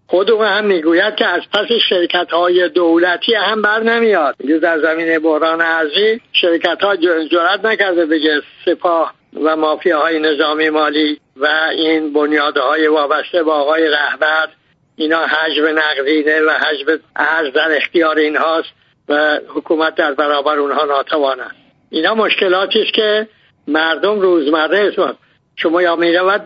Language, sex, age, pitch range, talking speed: English, male, 60-79, 155-190 Hz, 135 wpm